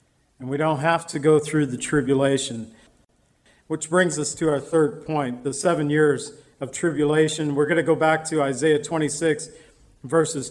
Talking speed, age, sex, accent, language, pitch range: 170 wpm, 50-69, male, American, English, 145-180 Hz